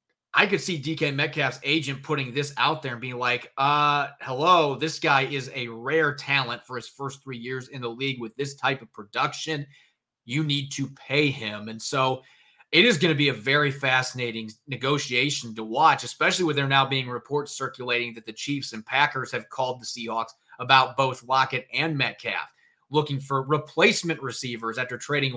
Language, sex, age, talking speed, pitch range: English, male, 30-49, 185 wpm, 125-150 Hz